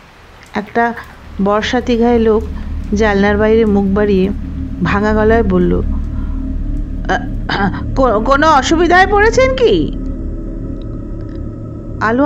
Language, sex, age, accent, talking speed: Bengali, female, 50-69, native, 75 wpm